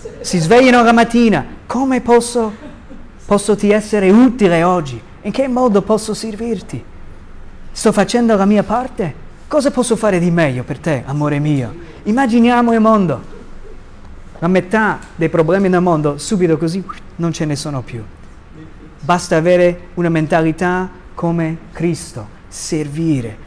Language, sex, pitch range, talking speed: Italian, male, 140-210 Hz, 135 wpm